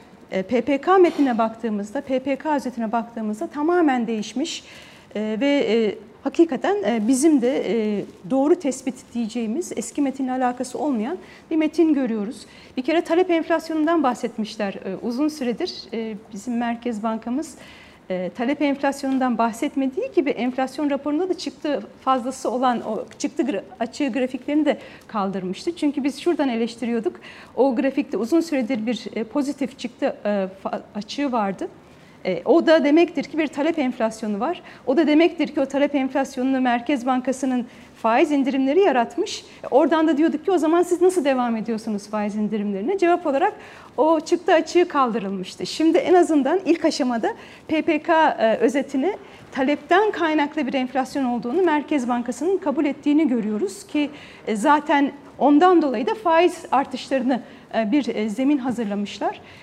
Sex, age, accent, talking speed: female, 40-59, native, 135 wpm